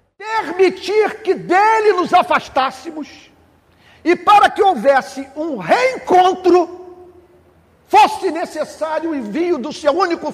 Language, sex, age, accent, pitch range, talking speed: Portuguese, male, 50-69, Brazilian, 285-365 Hz, 105 wpm